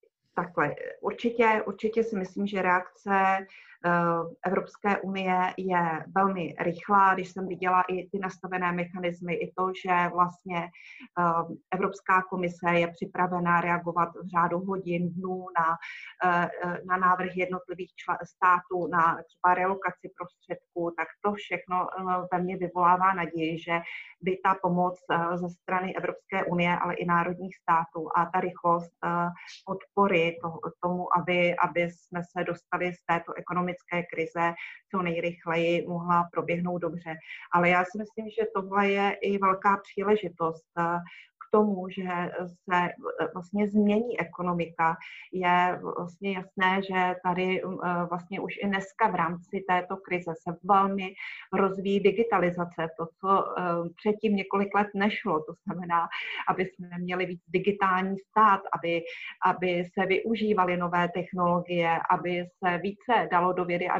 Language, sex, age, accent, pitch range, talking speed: Czech, female, 30-49, native, 175-195 Hz, 130 wpm